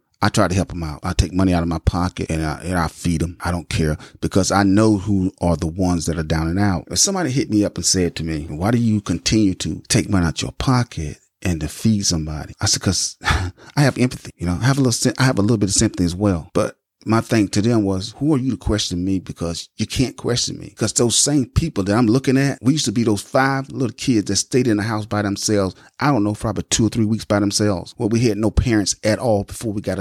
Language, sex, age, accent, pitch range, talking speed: English, male, 30-49, American, 95-120 Hz, 275 wpm